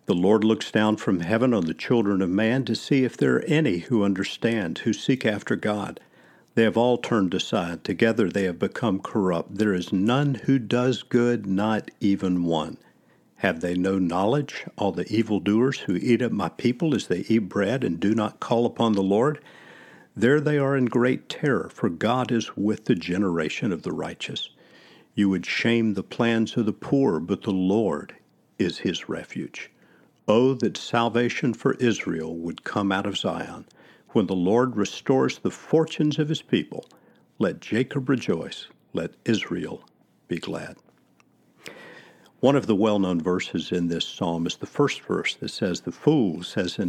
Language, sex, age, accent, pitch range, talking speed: English, male, 50-69, American, 95-120 Hz, 180 wpm